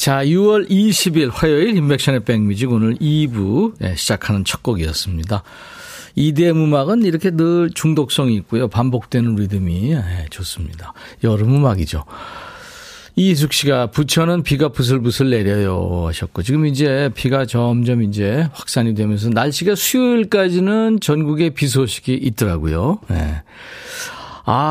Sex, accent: male, native